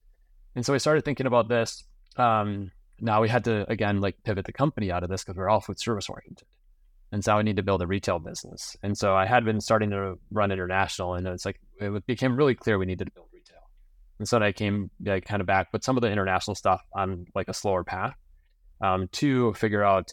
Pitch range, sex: 90-110 Hz, male